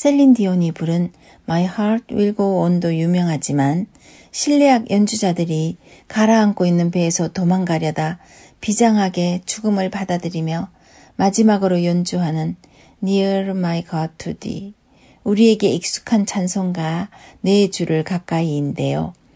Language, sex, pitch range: Korean, female, 170-225 Hz